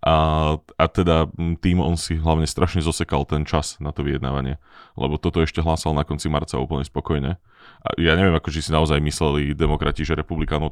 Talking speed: 190 wpm